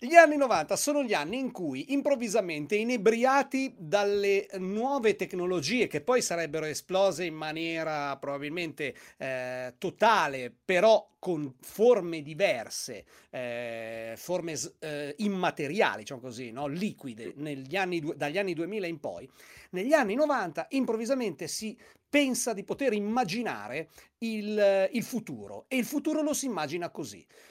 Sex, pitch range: male, 150-220 Hz